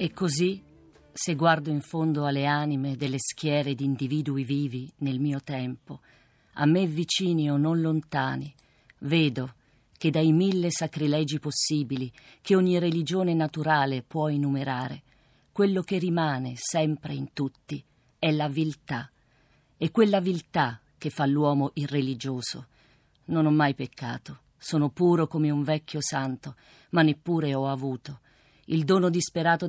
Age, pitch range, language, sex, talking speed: 40-59, 135-170 Hz, Italian, female, 135 wpm